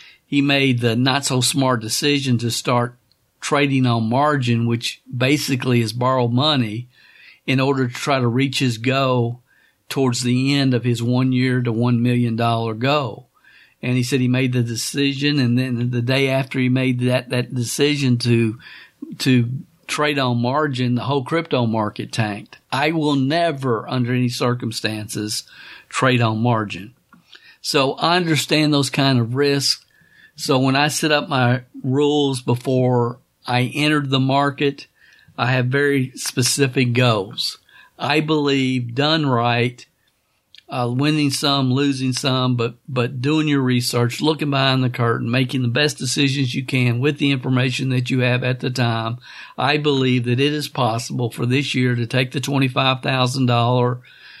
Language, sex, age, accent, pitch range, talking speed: English, male, 50-69, American, 120-140 Hz, 155 wpm